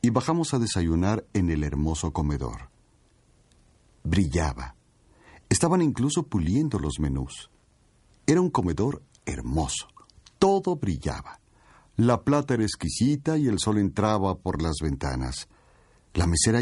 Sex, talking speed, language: male, 120 wpm, Spanish